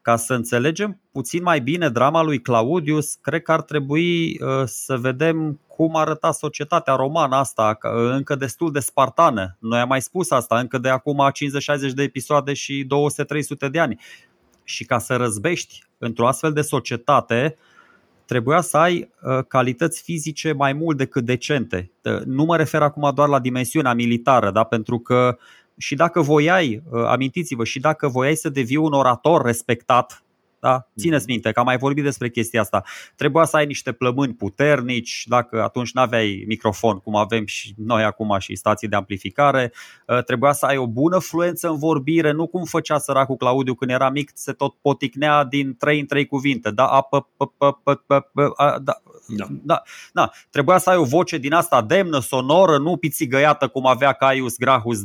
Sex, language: male, Romanian